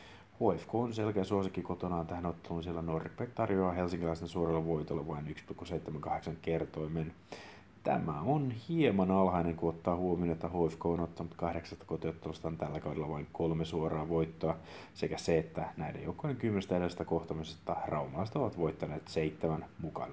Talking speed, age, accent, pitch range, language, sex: 140 wpm, 30-49, native, 80-95 Hz, Finnish, male